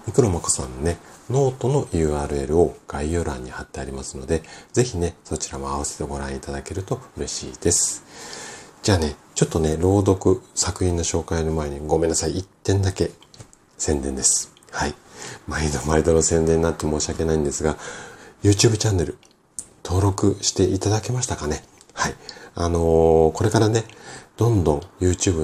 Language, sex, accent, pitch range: Japanese, male, native, 75-95 Hz